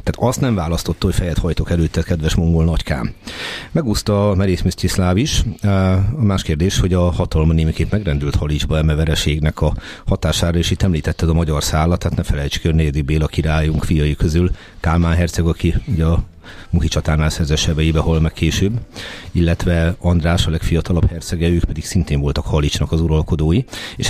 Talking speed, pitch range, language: 160 wpm, 80-95 Hz, Hungarian